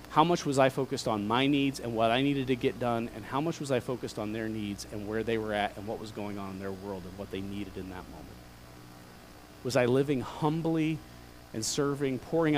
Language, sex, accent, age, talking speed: English, male, American, 40-59, 245 wpm